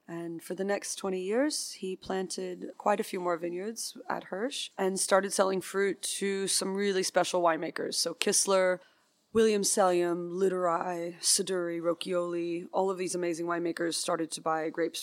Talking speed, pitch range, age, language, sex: 160 wpm, 170-195 Hz, 20-39, English, female